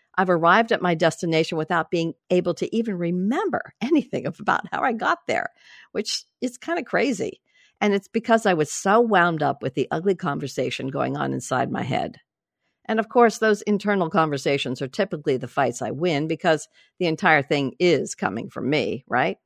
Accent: American